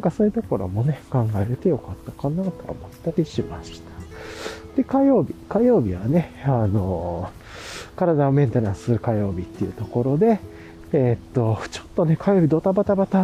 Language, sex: Japanese, male